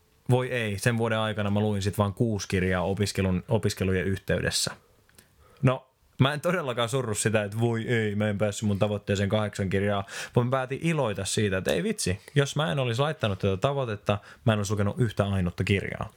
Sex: male